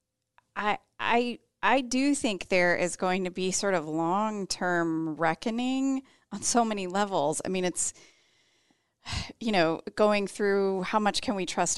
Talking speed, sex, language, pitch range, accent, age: 155 wpm, female, English, 165-215 Hz, American, 30-49